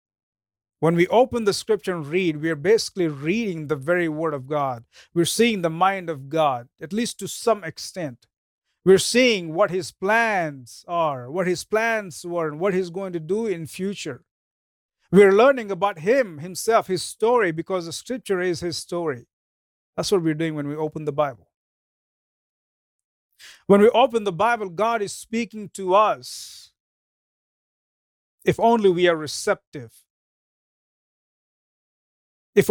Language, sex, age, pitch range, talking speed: English, male, 50-69, 155-205 Hz, 150 wpm